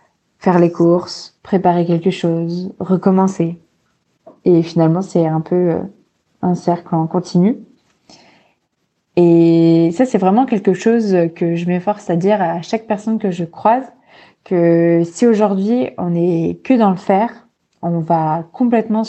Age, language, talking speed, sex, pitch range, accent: 20-39, French, 140 wpm, female, 170-210 Hz, French